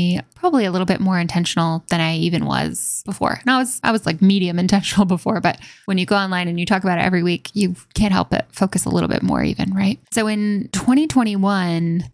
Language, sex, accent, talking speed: English, female, American, 230 wpm